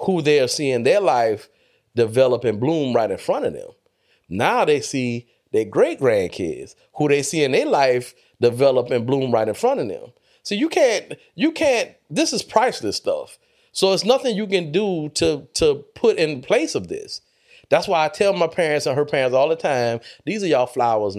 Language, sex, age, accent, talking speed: English, male, 30-49, American, 205 wpm